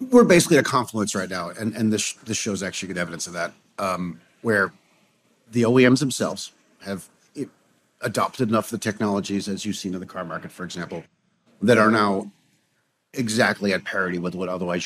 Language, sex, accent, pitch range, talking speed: English, male, American, 90-110 Hz, 185 wpm